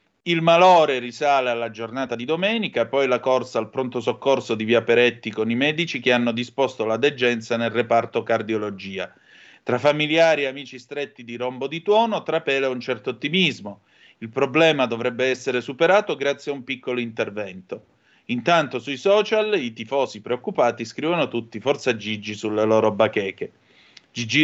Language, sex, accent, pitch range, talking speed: Italian, male, native, 120-150 Hz, 155 wpm